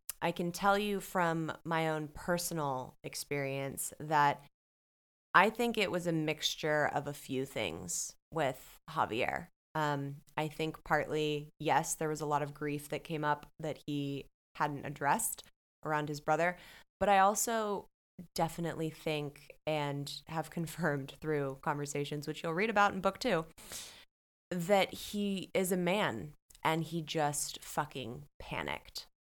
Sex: female